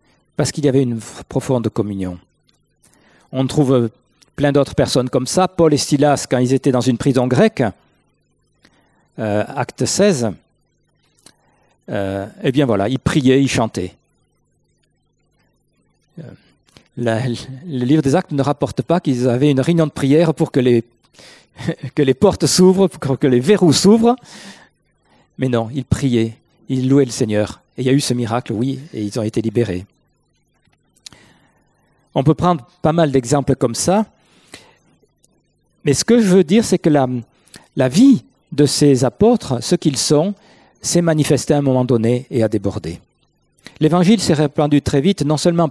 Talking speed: 160 wpm